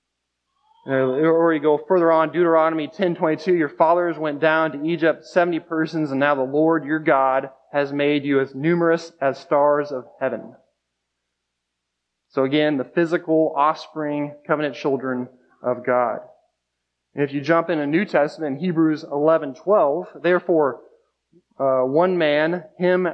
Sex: male